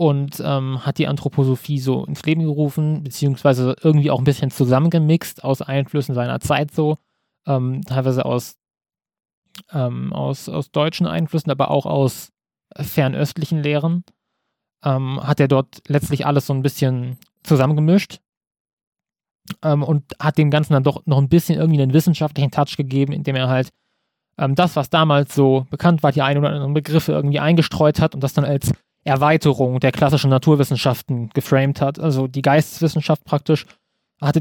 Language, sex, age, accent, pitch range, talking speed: German, male, 20-39, German, 135-155 Hz, 160 wpm